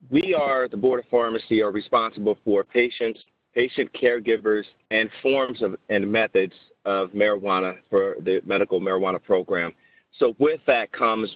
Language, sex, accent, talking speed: English, male, American, 150 wpm